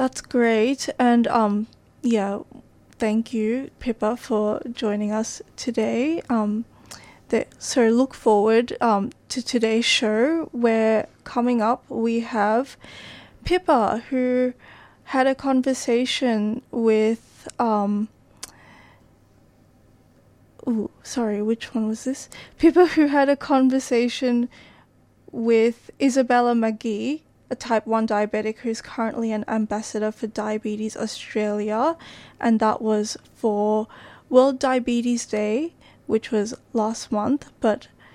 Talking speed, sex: 110 wpm, female